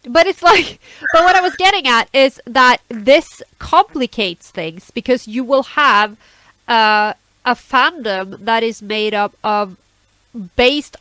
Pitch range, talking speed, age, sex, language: 185-245 Hz, 145 wpm, 30-49, female, English